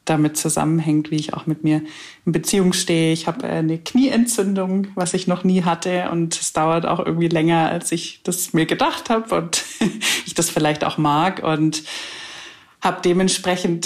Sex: female